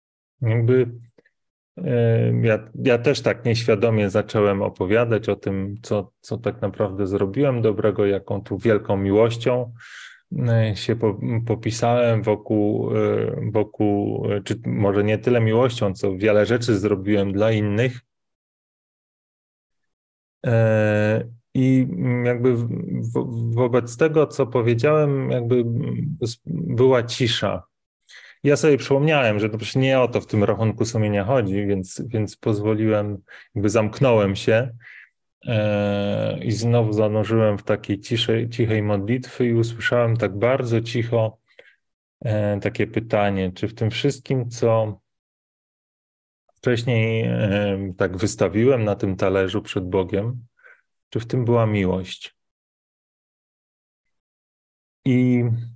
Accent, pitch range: native, 105-120 Hz